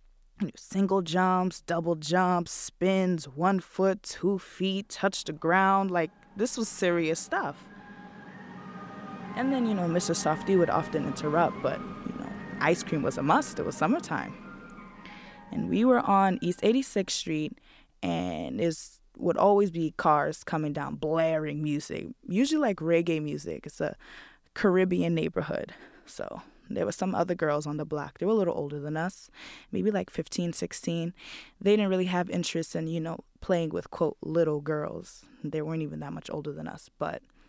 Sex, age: female, 20-39